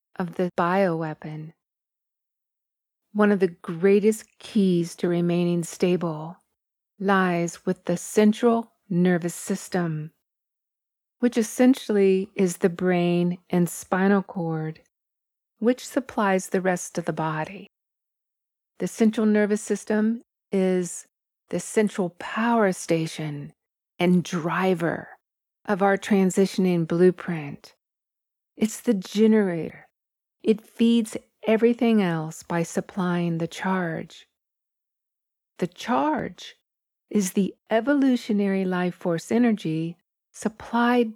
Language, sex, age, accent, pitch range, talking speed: English, female, 40-59, American, 175-215 Hz, 100 wpm